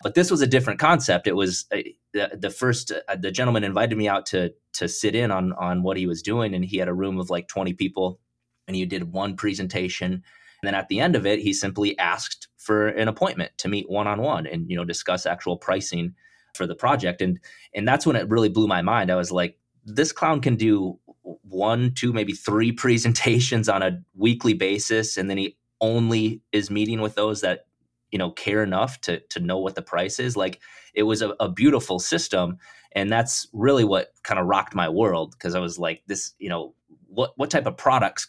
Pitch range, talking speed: 90-110 Hz, 220 wpm